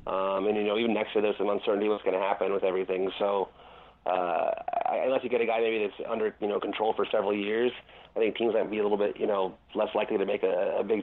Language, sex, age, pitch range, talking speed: English, male, 30-49, 100-140 Hz, 275 wpm